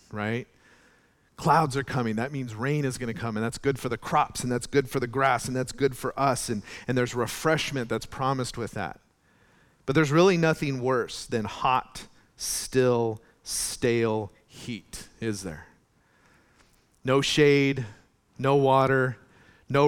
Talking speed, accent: 155 wpm, American